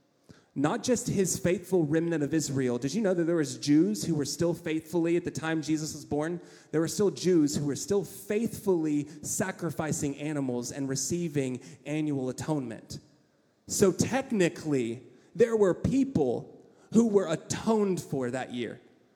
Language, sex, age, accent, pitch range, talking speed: English, male, 30-49, American, 145-190 Hz, 155 wpm